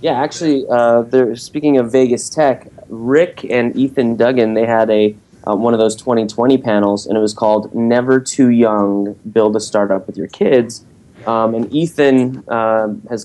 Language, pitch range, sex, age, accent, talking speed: English, 105-130 Hz, male, 20-39, American, 175 wpm